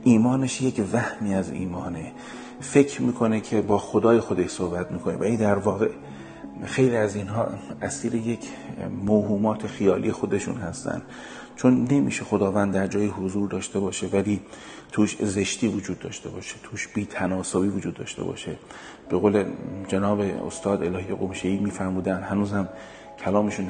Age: 40-59